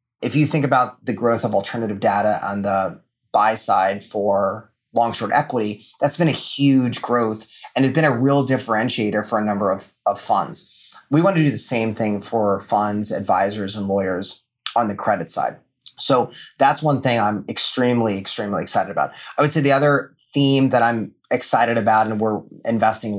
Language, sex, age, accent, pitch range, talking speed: English, male, 30-49, American, 105-135 Hz, 185 wpm